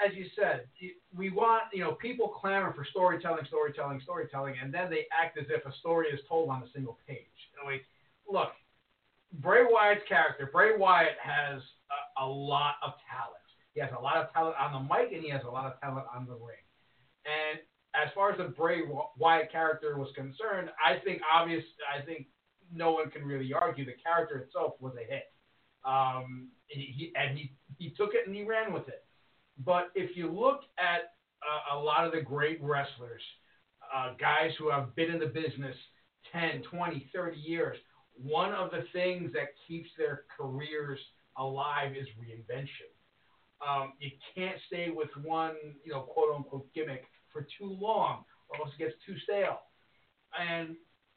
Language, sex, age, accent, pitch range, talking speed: English, male, 40-59, American, 140-180 Hz, 180 wpm